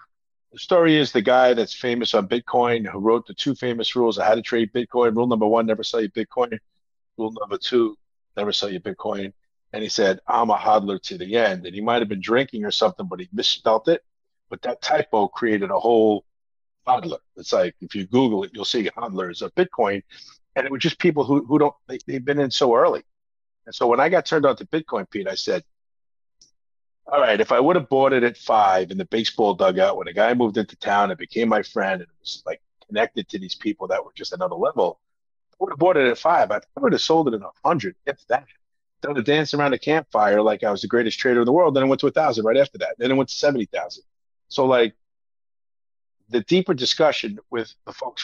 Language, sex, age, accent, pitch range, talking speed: English, male, 50-69, American, 110-145 Hz, 235 wpm